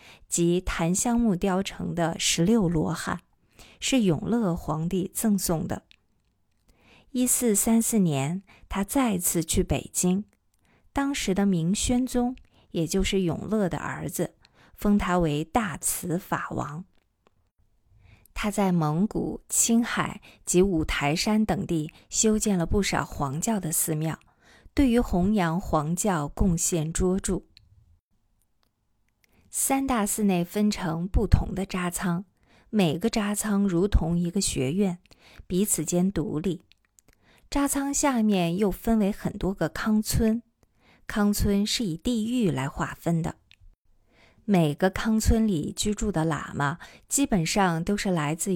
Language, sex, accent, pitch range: Chinese, female, native, 160-215 Hz